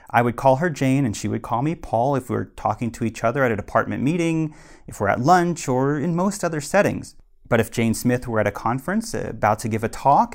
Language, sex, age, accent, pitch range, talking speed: English, male, 30-49, American, 105-140 Hz, 255 wpm